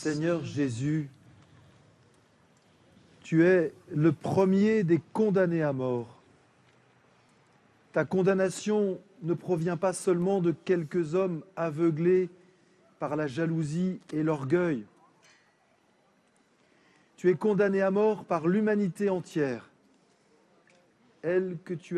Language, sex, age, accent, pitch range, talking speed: French, male, 40-59, French, 145-185 Hz, 100 wpm